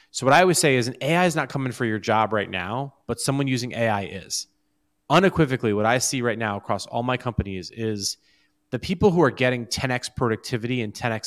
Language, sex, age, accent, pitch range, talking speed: English, male, 30-49, American, 105-135 Hz, 220 wpm